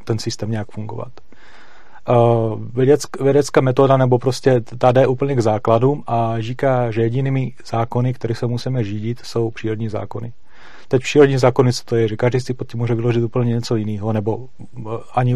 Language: Czech